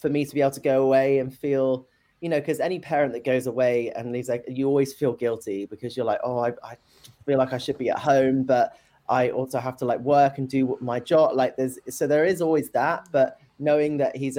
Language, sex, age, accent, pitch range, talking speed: English, male, 20-39, British, 125-145 Hz, 250 wpm